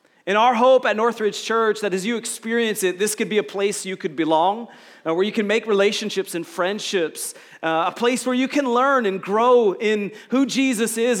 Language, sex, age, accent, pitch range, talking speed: English, male, 30-49, American, 185-240 Hz, 215 wpm